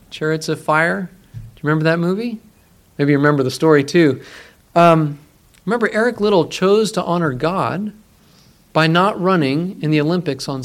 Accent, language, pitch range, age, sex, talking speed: American, English, 150-205 Hz, 40-59, male, 165 wpm